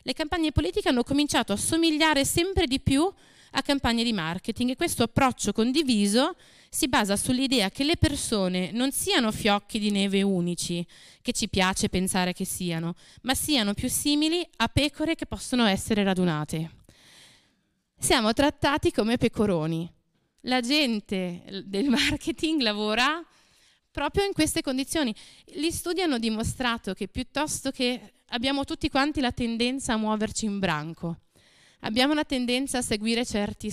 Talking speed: 145 wpm